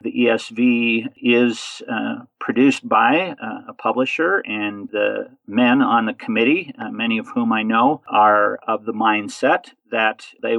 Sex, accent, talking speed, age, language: male, American, 155 wpm, 50-69, English